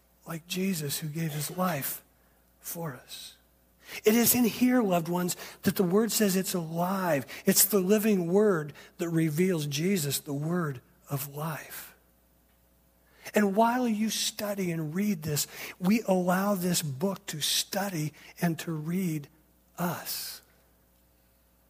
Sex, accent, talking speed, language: male, American, 135 wpm, Finnish